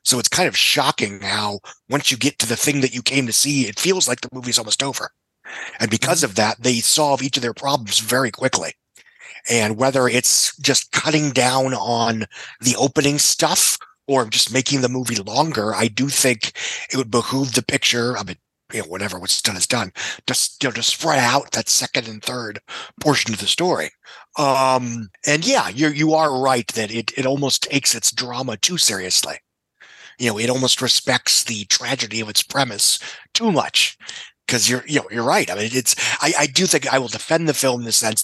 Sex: male